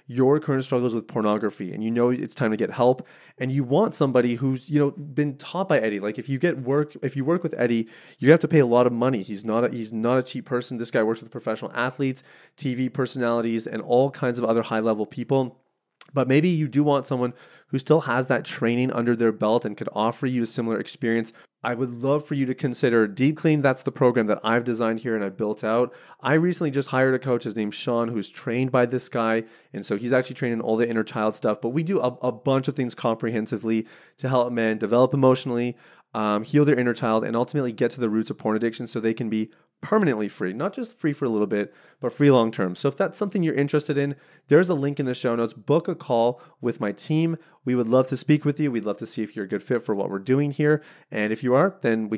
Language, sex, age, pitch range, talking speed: English, male, 30-49, 115-140 Hz, 255 wpm